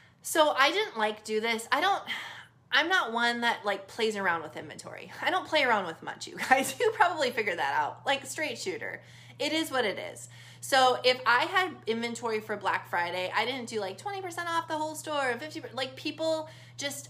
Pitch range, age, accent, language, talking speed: 195-260 Hz, 20-39, American, English, 210 wpm